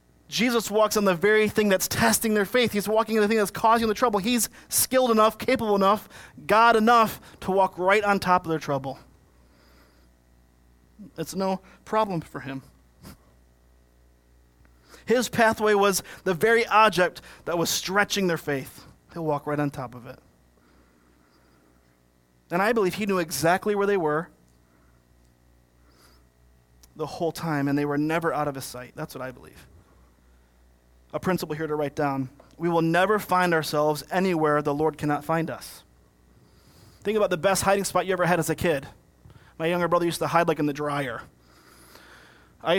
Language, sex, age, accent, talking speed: English, male, 30-49, American, 170 wpm